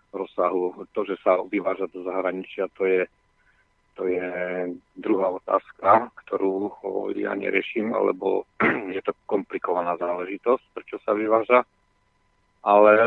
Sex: male